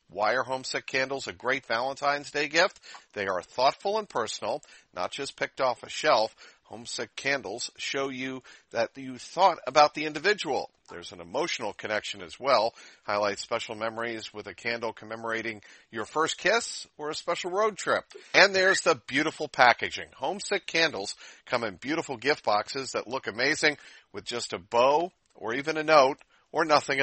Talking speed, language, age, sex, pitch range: 170 wpm, English, 50-69, male, 115-150 Hz